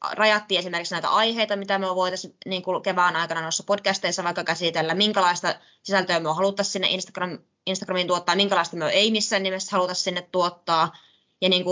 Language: Finnish